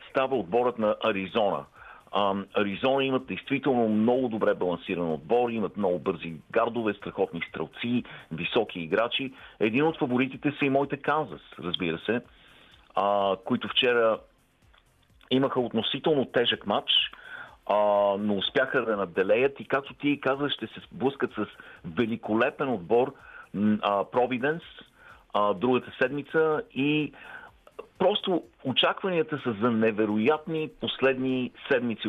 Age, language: 50-69, Bulgarian